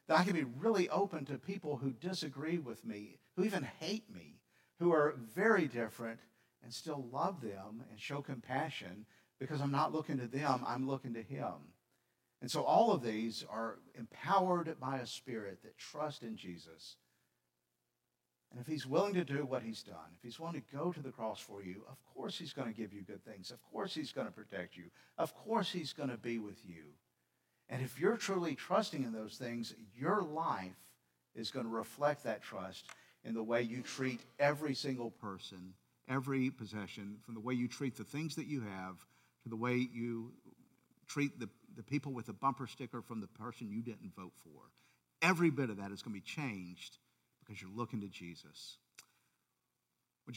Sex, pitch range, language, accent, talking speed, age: male, 105-145 Hz, English, American, 195 wpm, 50-69